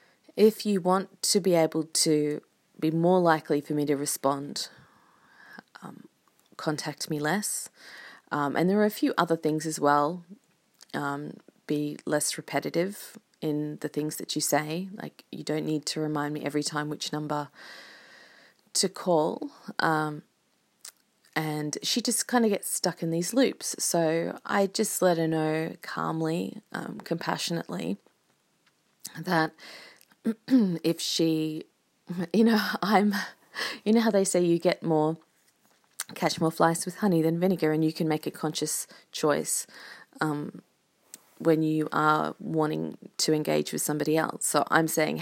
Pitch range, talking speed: 155-210 Hz, 150 wpm